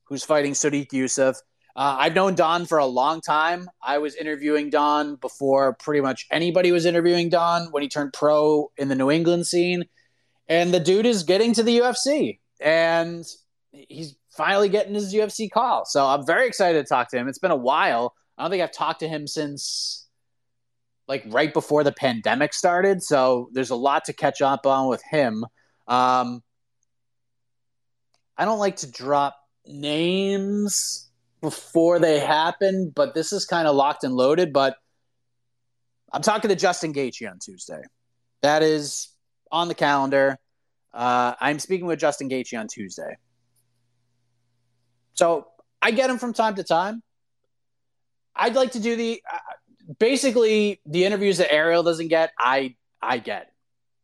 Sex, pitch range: male, 125-175 Hz